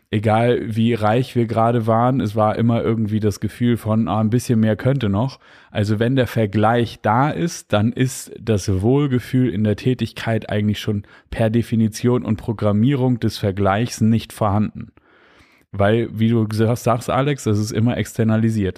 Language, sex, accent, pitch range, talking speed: German, male, German, 105-120 Hz, 165 wpm